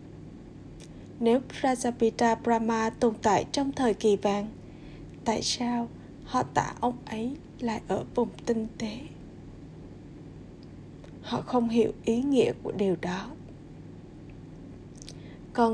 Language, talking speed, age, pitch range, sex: Vietnamese, 110 wpm, 20-39, 215-250 Hz, female